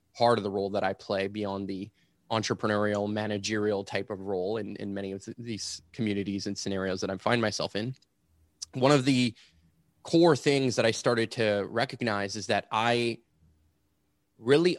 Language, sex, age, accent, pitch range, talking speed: English, male, 20-39, American, 100-120 Hz, 170 wpm